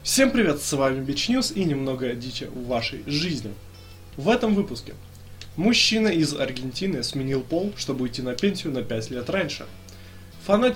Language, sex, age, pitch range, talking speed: Russian, male, 20-39, 115-165 Hz, 160 wpm